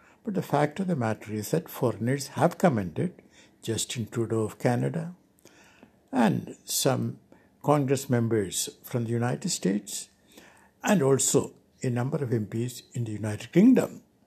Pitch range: 115-165 Hz